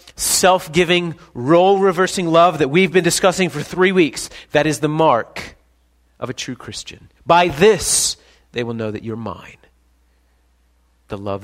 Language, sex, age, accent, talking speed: English, male, 30-49, American, 155 wpm